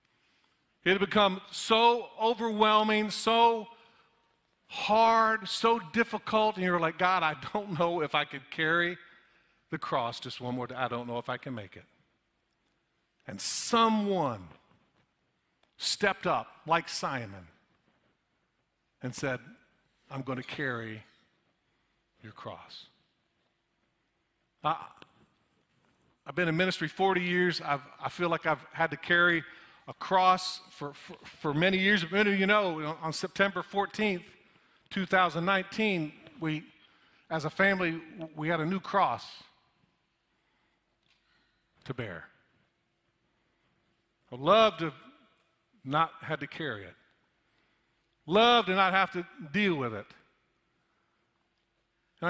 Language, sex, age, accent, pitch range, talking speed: English, male, 50-69, American, 155-200 Hz, 125 wpm